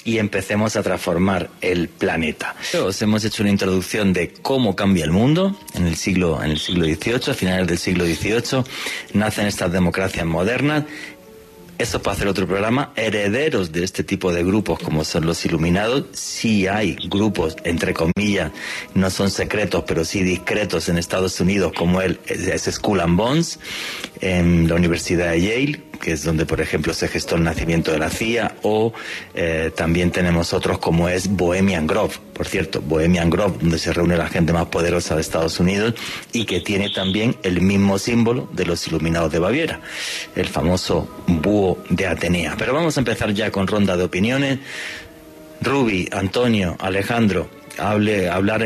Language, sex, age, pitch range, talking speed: Spanish, male, 30-49, 85-105 Hz, 170 wpm